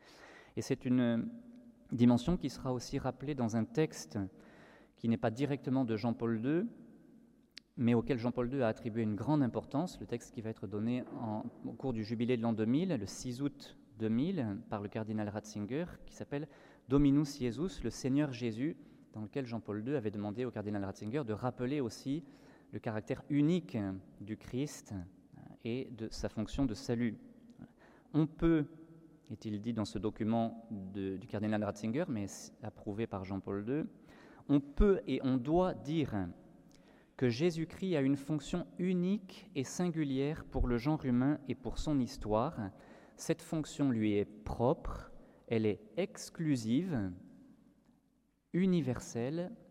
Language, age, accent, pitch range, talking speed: French, 30-49, French, 110-150 Hz, 155 wpm